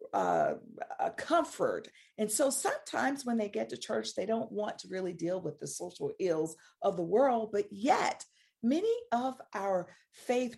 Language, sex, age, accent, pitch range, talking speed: English, female, 40-59, American, 160-215 Hz, 170 wpm